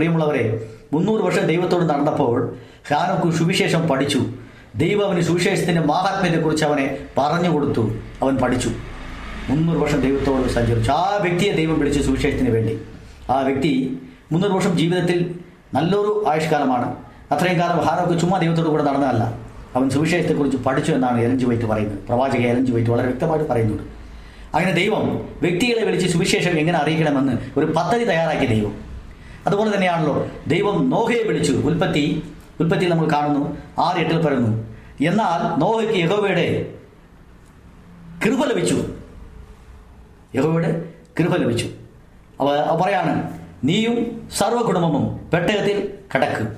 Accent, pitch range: native, 120-170 Hz